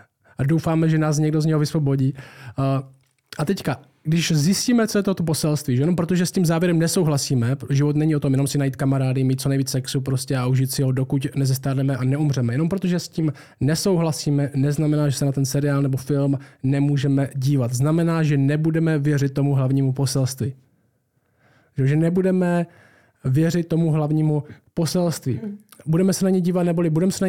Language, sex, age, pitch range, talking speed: Czech, male, 20-39, 135-165 Hz, 180 wpm